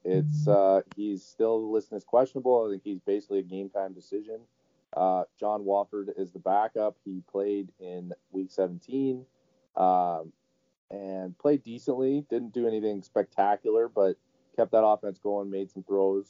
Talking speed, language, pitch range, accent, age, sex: 155 wpm, English, 95-125 Hz, American, 30-49, male